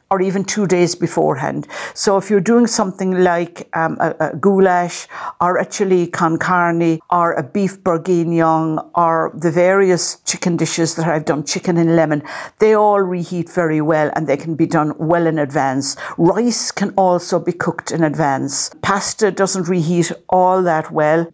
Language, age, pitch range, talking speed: English, 60-79, 160-185 Hz, 170 wpm